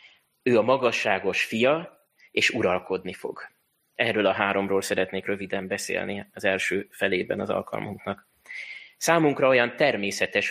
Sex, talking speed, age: male, 120 wpm, 20-39